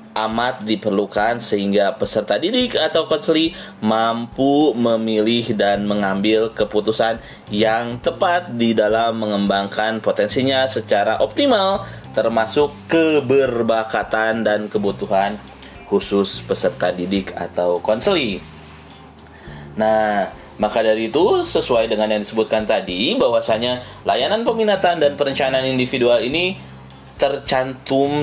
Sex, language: male, Indonesian